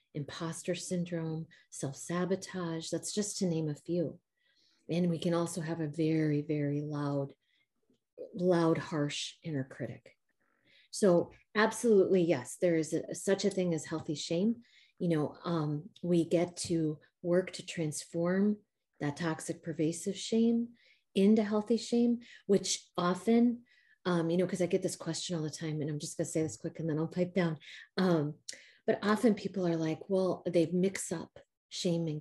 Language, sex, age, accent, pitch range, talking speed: English, female, 30-49, American, 160-195 Hz, 160 wpm